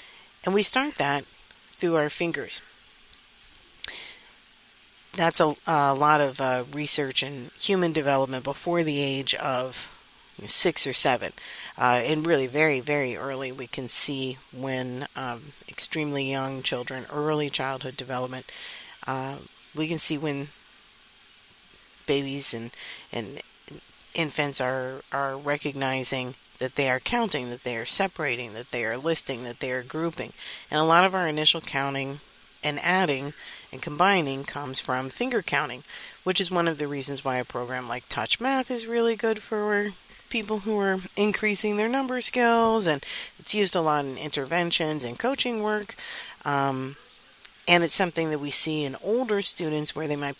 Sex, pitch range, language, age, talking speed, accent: female, 135-175 Hz, English, 50-69, 155 wpm, American